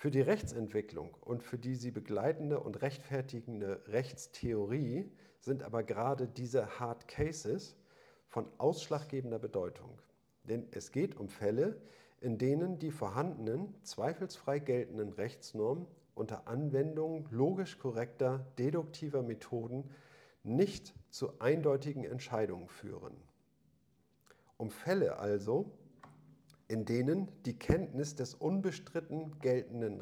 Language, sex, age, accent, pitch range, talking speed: German, male, 50-69, German, 120-155 Hz, 105 wpm